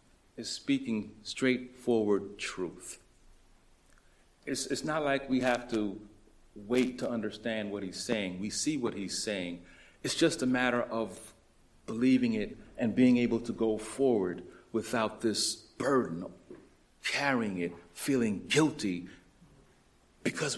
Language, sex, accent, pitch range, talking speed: English, male, American, 110-170 Hz, 125 wpm